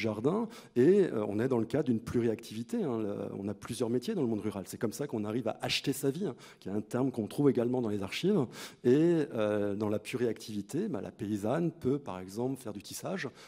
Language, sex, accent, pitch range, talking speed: French, male, French, 105-135 Hz, 215 wpm